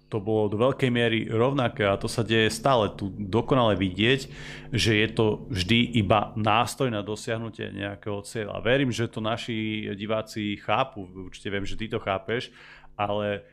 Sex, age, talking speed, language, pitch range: male, 30-49, 165 wpm, Slovak, 100-115 Hz